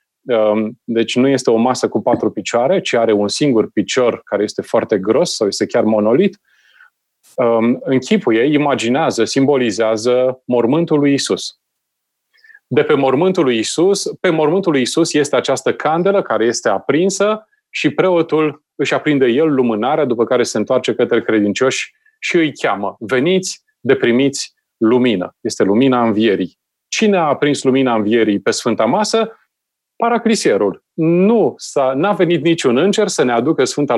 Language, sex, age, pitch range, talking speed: Romanian, male, 30-49, 120-200 Hz, 145 wpm